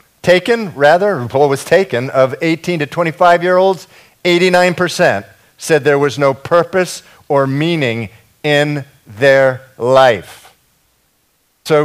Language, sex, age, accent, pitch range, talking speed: English, male, 50-69, American, 125-175 Hz, 115 wpm